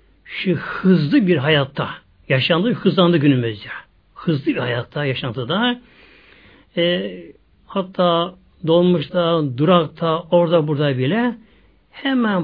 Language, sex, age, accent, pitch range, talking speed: Turkish, male, 60-79, native, 145-190 Hz, 95 wpm